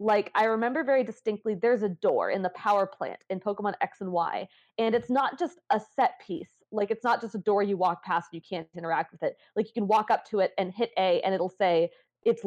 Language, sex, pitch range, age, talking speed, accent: English, female, 180-225 Hz, 20-39, 255 wpm, American